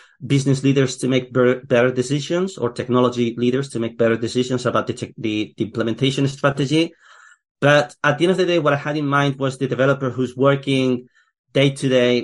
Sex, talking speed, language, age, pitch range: male, 180 wpm, English, 30-49, 125-155 Hz